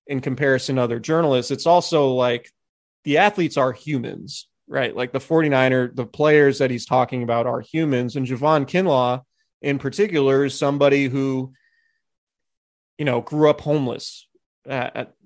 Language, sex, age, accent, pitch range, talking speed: English, male, 30-49, American, 125-150 Hz, 155 wpm